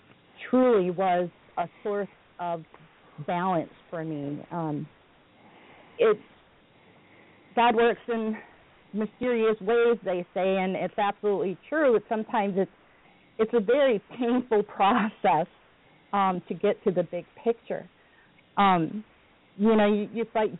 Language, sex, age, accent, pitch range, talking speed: English, female, 40-59, American, 180-225 Hz, 120 wpm